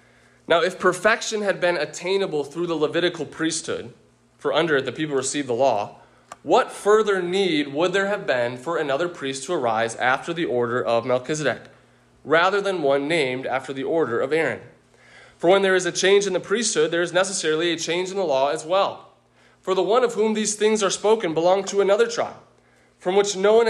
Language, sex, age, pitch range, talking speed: English, male, 20-39, 145-195 Hz, 205 wpm